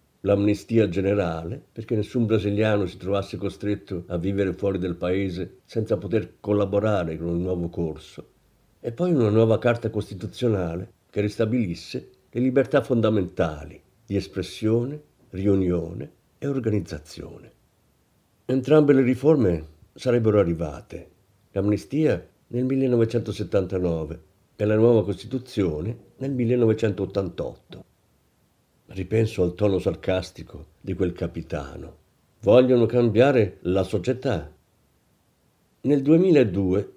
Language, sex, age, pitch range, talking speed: Italian, male, 50-69, 90-120 Hz, 100 wpm